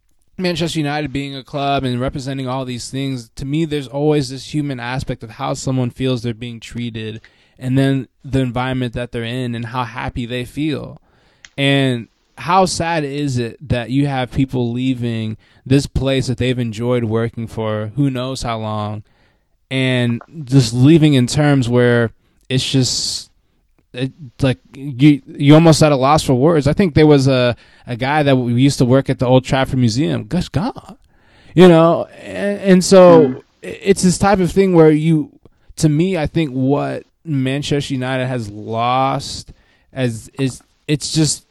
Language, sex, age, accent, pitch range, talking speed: English, male, 20-39, American, 125-150 Hz, 170 wpm